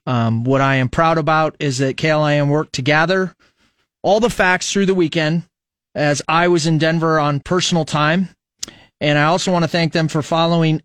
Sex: male